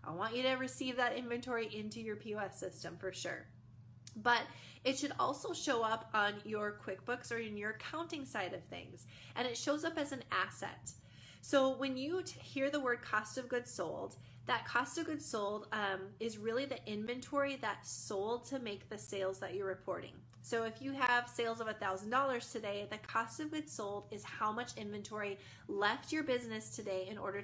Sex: female